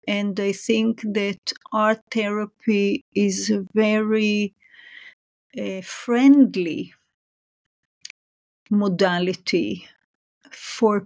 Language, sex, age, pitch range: English, female, 40-59, 195-240 Hz